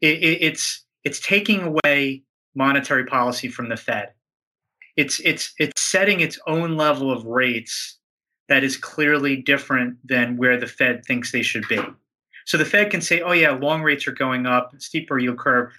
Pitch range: 125-160 Hz